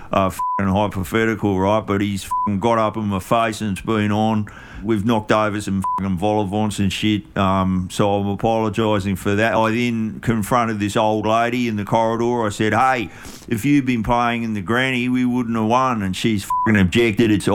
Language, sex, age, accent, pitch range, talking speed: English, male, 50-69, Australian, 100-120 Hz, 200 wpm